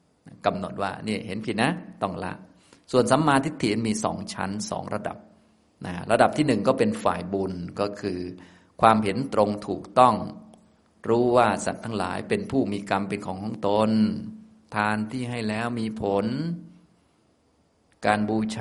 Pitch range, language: 95-110 Hz, Thai